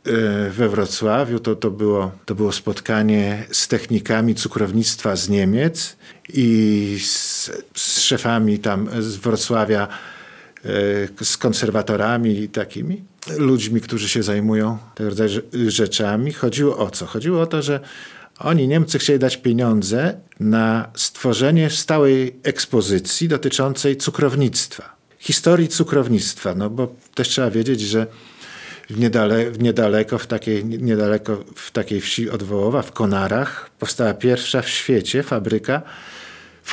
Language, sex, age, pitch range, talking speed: Polish, male, 50-69, 110-140 Hz, 125 wpm